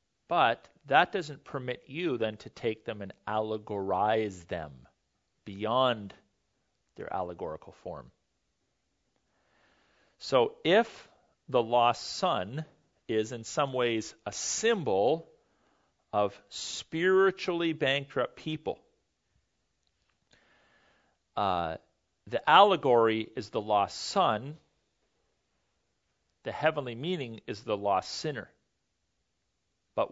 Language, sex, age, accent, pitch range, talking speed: English, male, 40-59, American, 115-155 Hz, 90 wpm